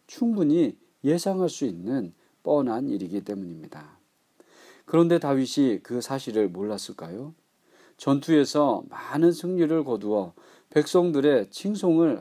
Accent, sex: native, male